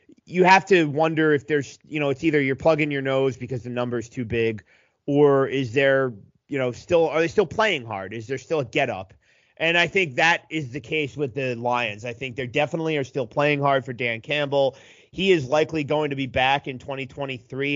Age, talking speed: 30-49, 225 wpm